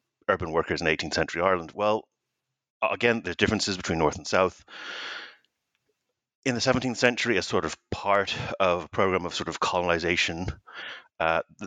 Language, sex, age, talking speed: English, male, 30-49, 150 wpm